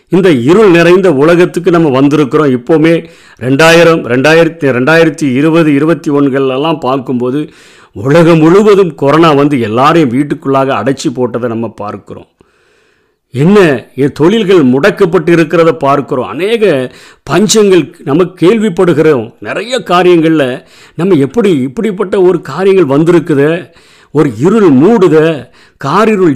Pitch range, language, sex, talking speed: 125-170 Hz, Tamil, male, 95 wpm